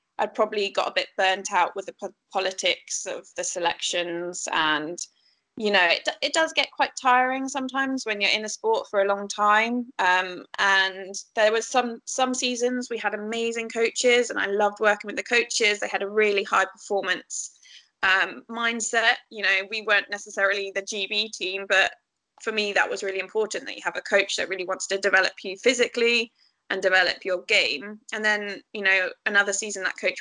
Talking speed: 195 wpm